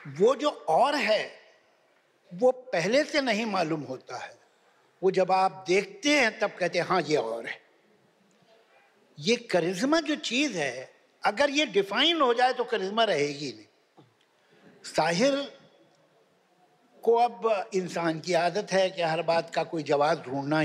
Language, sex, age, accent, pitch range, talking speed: Hindi, male, 60-79, native, 180-255 Hz, 150 wpm